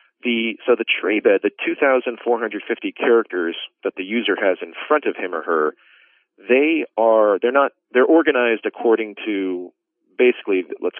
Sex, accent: male, American